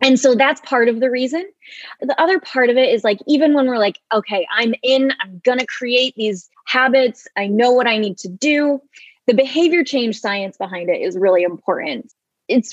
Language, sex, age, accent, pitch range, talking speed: English, female, 20-39, American, 200-260 Hz, 205 wpm